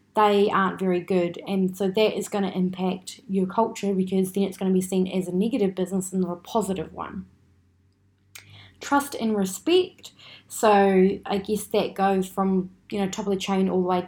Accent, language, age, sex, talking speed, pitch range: Australian, English, 20-39, female, 195 wpm, 190-220 Hz